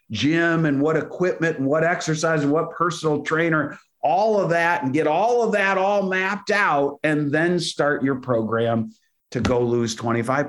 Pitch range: 130-170 Hz